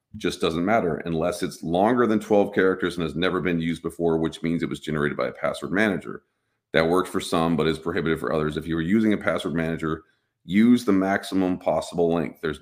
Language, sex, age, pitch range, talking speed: English, male, 40-59, 80-95 Hz, 220 wpm